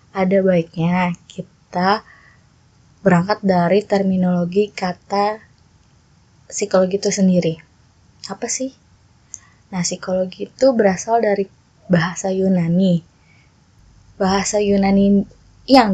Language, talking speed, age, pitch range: Indonesian, 85 wpm, 20-39, 185-210 Hz